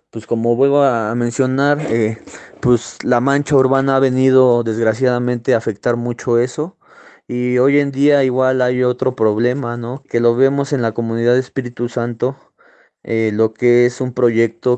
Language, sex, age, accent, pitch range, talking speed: Spanish, male, 20-39, Mexican, 115-130 Hz, 165 wpm